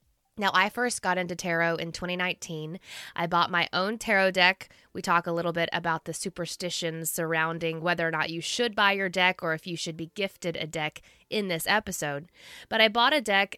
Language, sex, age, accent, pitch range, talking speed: English, female, 20-39, American, 170-215 Hz, 210 wpm